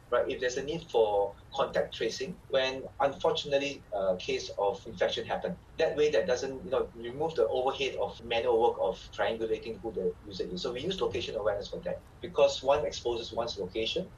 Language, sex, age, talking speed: English, male, 30-49, 190 wpm